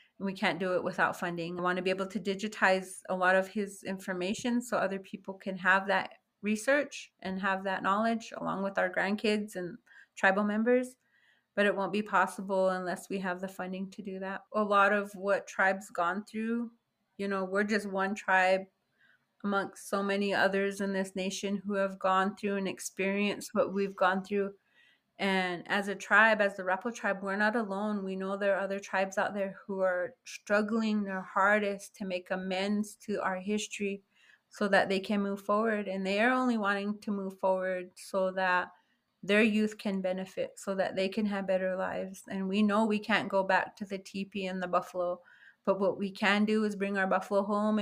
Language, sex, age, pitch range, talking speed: English, female, 30-49, 190-210 Hz, 200 wpm